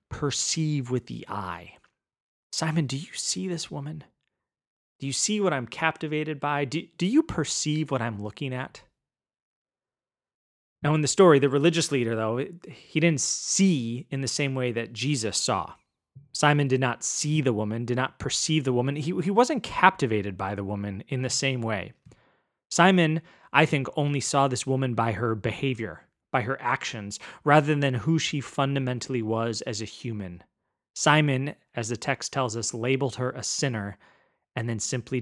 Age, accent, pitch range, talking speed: 30-49, American, 115-150 Hz, 170 wpm